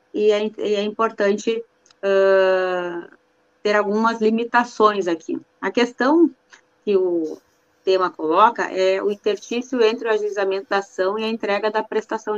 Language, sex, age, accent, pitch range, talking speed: Portuguese, female, 20-39, Brazilian, 195-255 Hz, 130 wpm